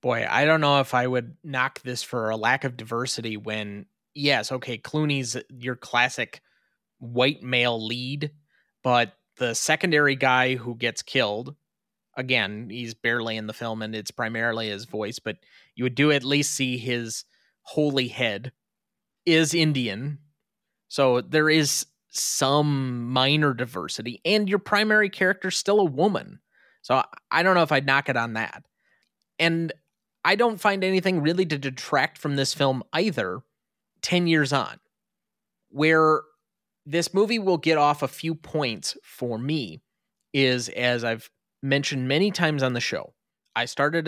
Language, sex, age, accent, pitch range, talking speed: English, male, 30-49, American, 120-160 Hz, 155 wpm